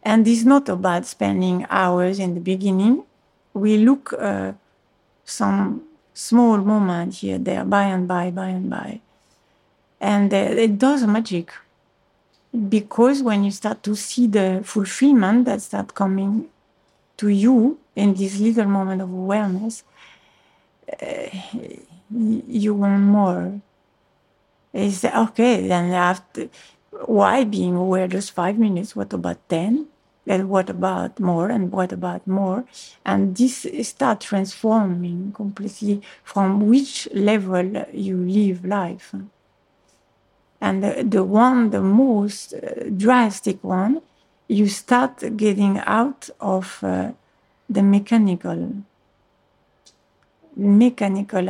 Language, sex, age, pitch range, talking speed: Russian, female, 50-69, 190-225 Hz, 115 wpm